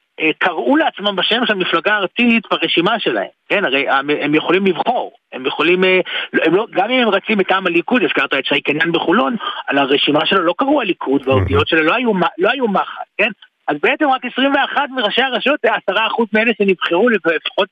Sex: male